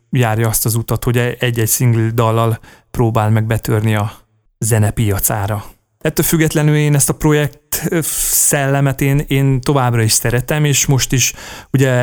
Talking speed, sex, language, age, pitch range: 145 wpm, male, Hungarian, 30-49, 115-135 Hz